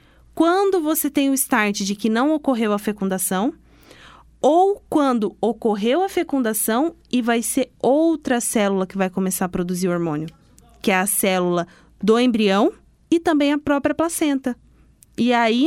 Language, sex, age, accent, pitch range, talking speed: Portuguese, female, 20-39, Brazilian, 220-280 Hz, 155 wpm